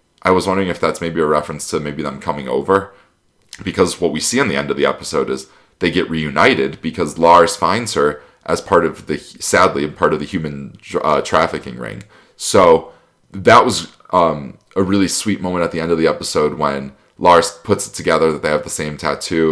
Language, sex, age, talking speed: English, male, 20-39, 210 wpm